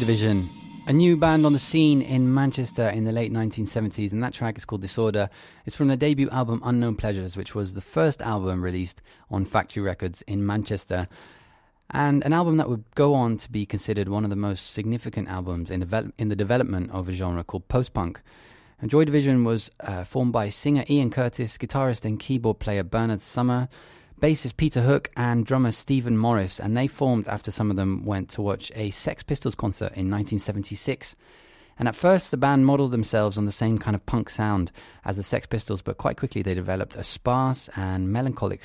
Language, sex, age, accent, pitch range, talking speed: English, male, 20-39, British, 100-125 Hz, 195 wpm